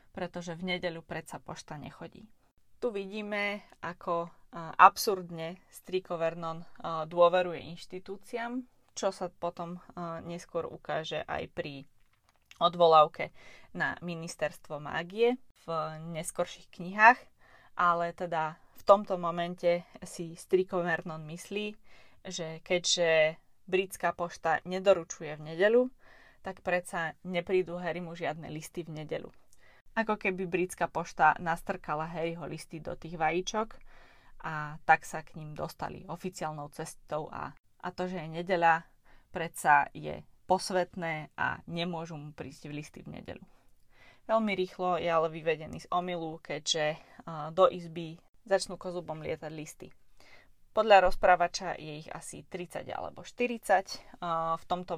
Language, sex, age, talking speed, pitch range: Slovak, female, 20-39, 120 wpm, 160-185 Hz